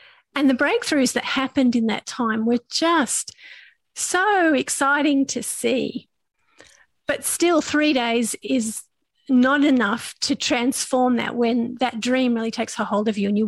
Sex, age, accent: female, 40-59, Australian